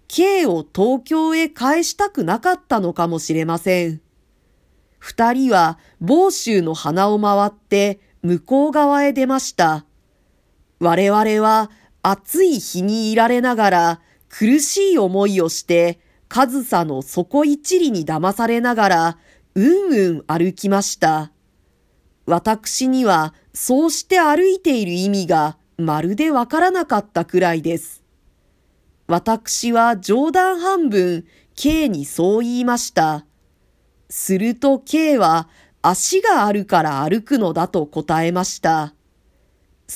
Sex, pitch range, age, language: female, 170-265 Hz, 40-59, Japanese